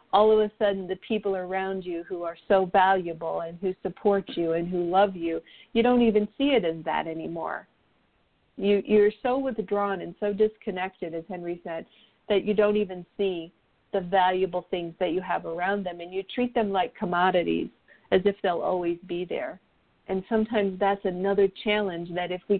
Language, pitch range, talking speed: English, 175-210 Hz, 185 wpm